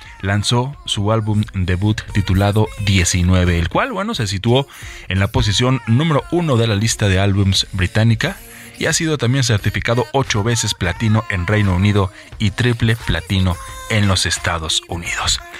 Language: Spanish